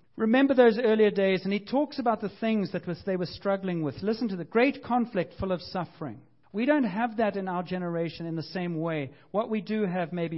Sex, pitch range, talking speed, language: male, 170-215 Hz, 230 wpm, English